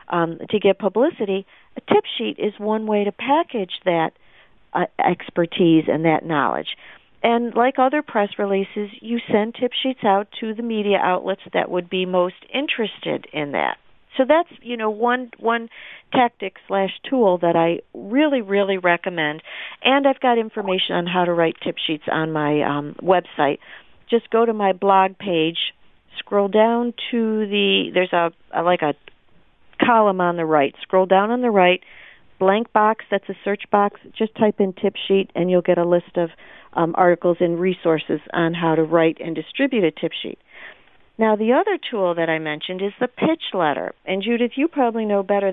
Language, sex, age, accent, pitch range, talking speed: English, female, 50-69, American, 175-230 Hz, 180 wpm